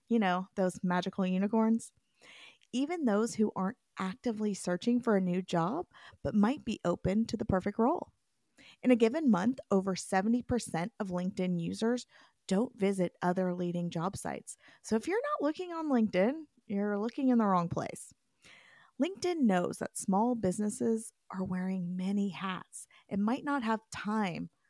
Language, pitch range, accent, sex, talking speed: English, 185-240 Hz, American, female, 160 wpm